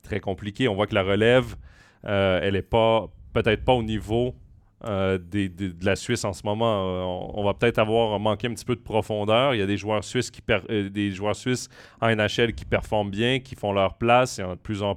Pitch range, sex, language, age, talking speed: 100-115 Hz, male, French, 30-49, 230 wpm